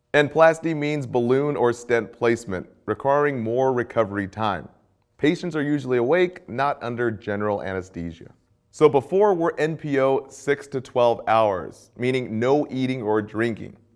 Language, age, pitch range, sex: English, 30-49, 110-145 Hz, male